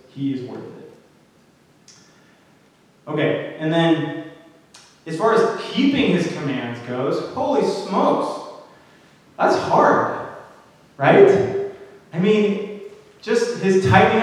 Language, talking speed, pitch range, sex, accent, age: English, 100 wpm, 145-200 Hz, male, American, 20-39